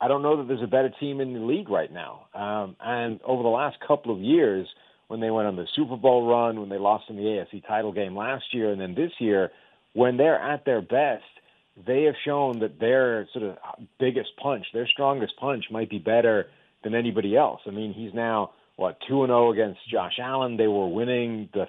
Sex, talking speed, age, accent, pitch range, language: male, 220 wpm, 40-59, American, 105-125 Hz, English